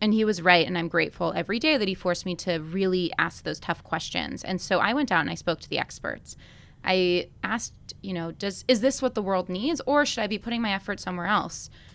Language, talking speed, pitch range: English, 250 wpm, 170-200 Hz